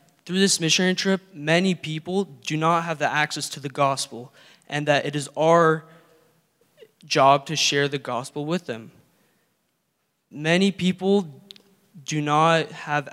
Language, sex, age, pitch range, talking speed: English, male, 20-39, 140-165 Hz, 140 wpm